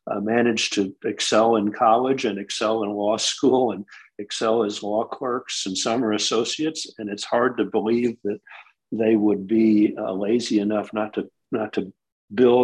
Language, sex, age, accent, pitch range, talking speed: English, male, 50-69, American, 105-125 Hz, 170 wpm